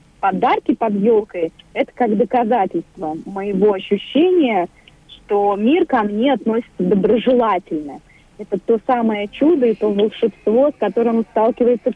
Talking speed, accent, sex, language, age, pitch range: 120 wpm, native, female, Russian, 30-49, 180-230 Hz